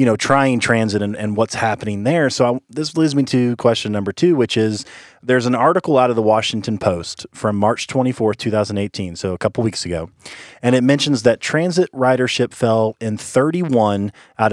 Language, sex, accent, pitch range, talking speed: English, male, American, 105-130 Hz, 195 wpm